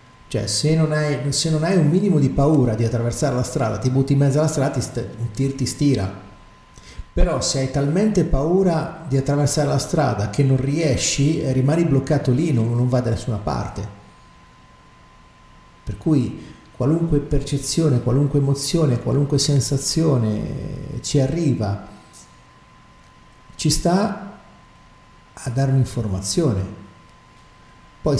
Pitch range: 110-145 Hz